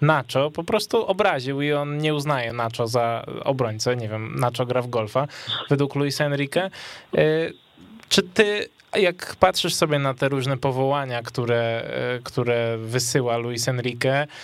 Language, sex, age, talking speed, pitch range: Polish, male, 20-39, 140 wpm, 135-165 Hz